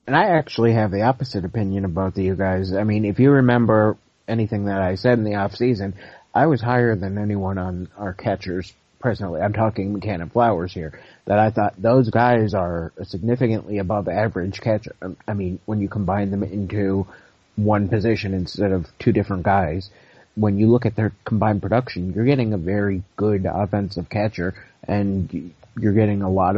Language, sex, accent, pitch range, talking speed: English, male, American, 95-110 Hz, 190 wpm